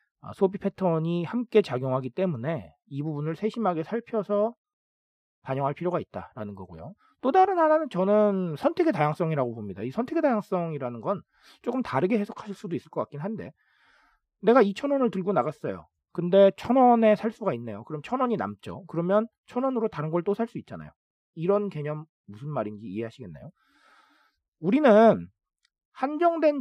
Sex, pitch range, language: male, 155-235 Hz, Korean